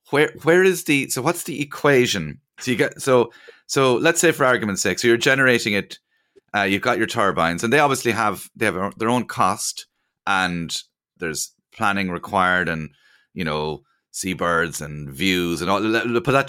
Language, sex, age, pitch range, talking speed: English, male, 30-49, 85-125 Hz, 190 wpm